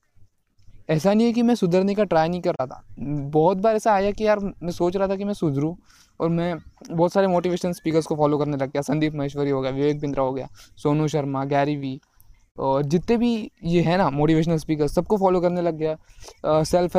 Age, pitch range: 20-39, 150-185 Hz